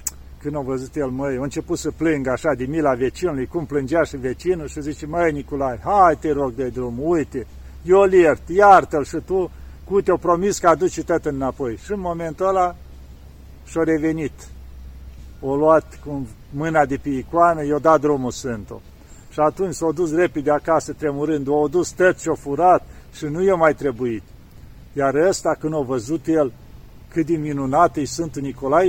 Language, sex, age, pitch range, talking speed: Romanian, male, 50-69, 130-170 Hz, 180 wpm